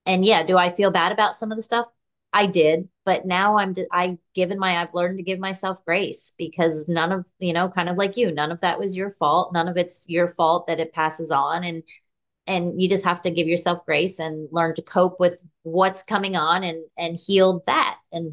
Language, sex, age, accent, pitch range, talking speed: English, female, 30-49, American, 165-195 Hz, 230 wpm